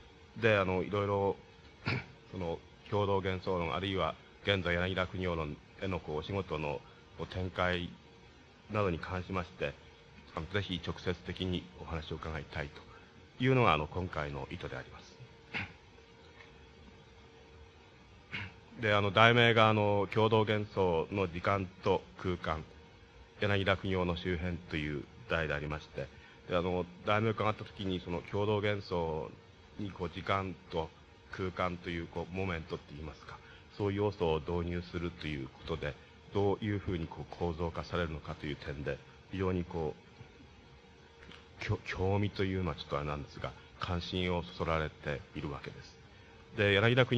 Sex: male